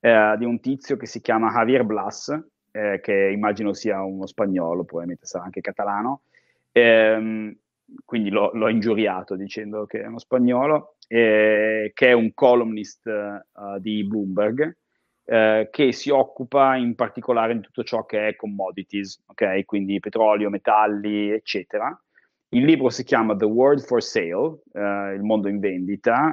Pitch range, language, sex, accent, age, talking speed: 105-125 Hz, Italian, male, native, 30-49, 150 wpm